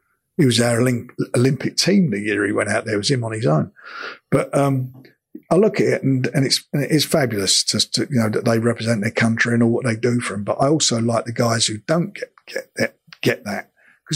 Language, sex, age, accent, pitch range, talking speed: English, male, 50-69, British, 115-135 Hz, 255 wpm